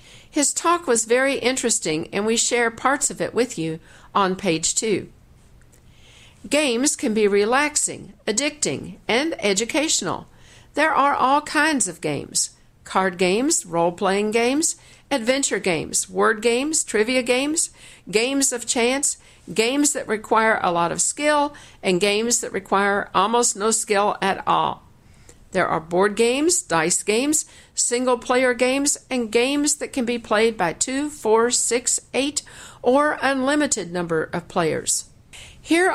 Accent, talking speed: American, 140 wpm